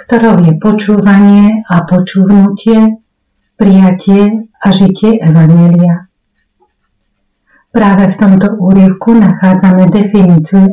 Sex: female